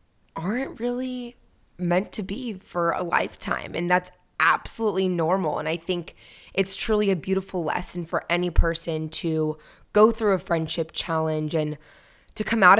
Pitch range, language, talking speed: 160-210 Hz, English, 155 wpm